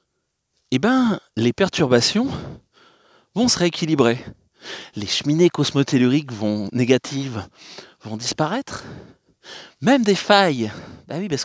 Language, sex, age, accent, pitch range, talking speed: French, male, 30-49, French, 120-180 Hz, 105 wpm